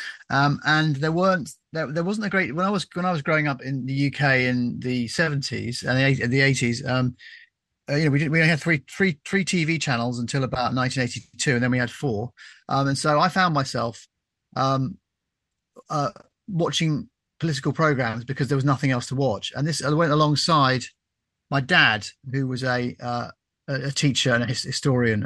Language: English